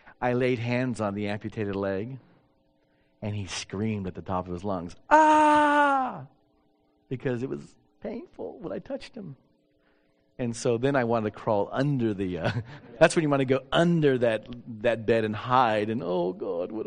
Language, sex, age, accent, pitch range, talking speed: English, male, 40-59, American, 95-140 Hz, 180 wpm